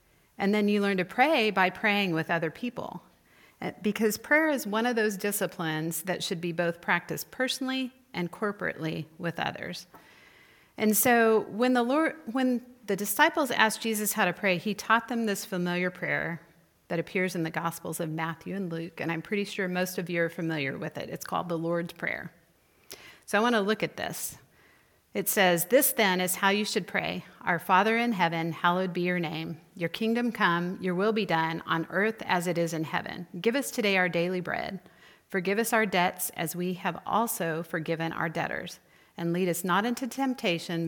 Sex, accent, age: female, American, 40-59